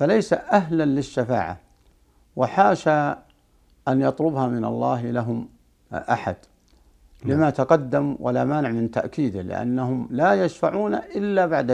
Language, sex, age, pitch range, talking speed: Arabic, male, 60-79, 100-145 Hz, 105 wpm